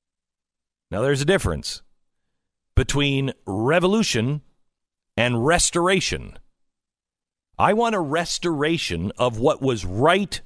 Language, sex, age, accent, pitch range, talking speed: English, male, 50-69, American, 100-170 Hz, 90 wpm